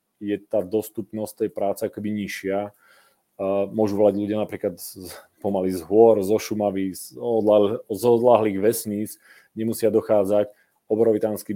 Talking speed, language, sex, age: 135 wpm, Czech, male, 30-49